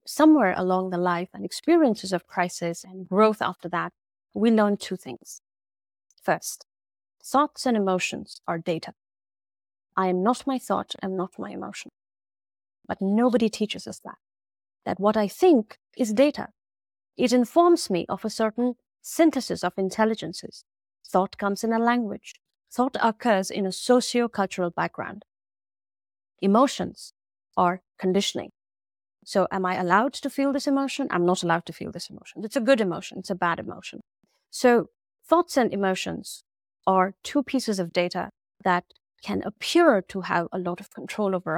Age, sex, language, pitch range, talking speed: 30-49, female, English, 175-245 Hz, 155 wpm